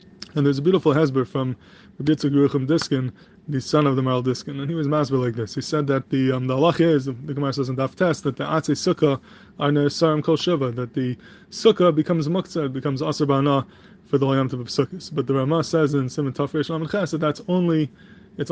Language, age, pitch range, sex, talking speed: English, 20-39, 135-160 Hz, male, 205 wpm